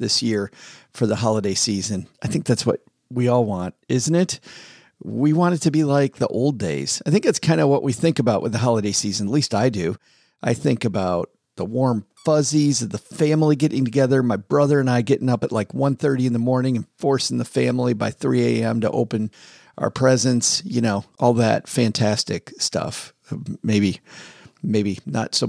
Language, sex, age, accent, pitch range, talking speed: English, male, 40-59, American, 110-140 Hz, 200 wpm